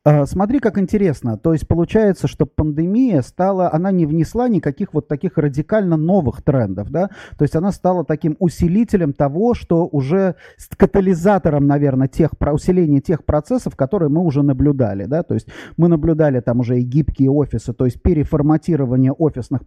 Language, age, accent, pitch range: Russian, 30-49, native, 145-190 Hz